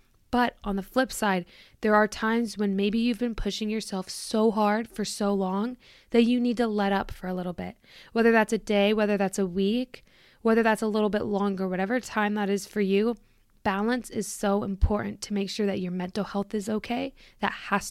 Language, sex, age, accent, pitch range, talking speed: English, female, 20-39, American, 195-220 Hz, 215 wpm